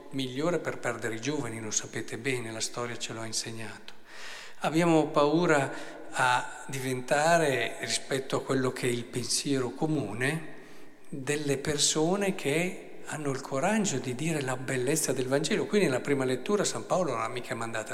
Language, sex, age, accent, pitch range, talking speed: Italian, male, 50-69, native, 120-160 Hz, 155 wpm